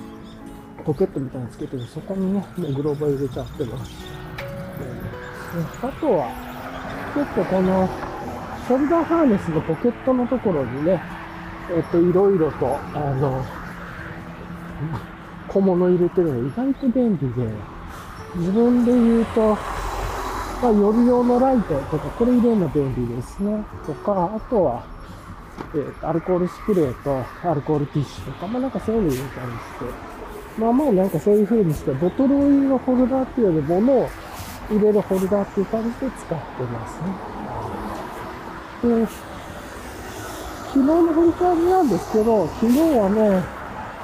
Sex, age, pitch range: male, 50-69, 150-240 Hz